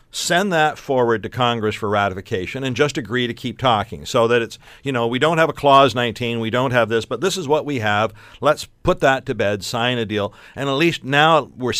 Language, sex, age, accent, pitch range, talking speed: English, male, 50-69, American, 105-135 Hz, 240 wpm